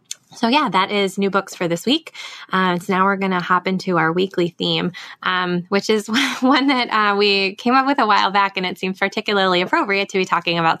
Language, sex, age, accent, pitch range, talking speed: English, female, 20-39, American, 170-205 Hz, 235 wpm